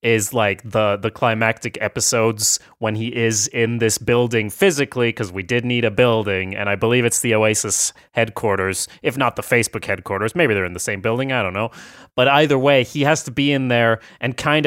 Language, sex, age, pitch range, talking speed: English, male, 30-49, 115-150 Hz, 210 wpm